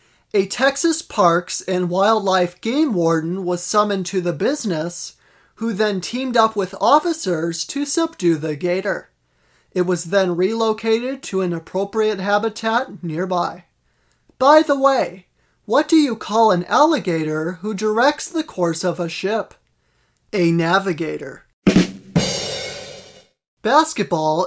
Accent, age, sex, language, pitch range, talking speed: American, 30-49, male, English, 175-235 Hz, 125 wpm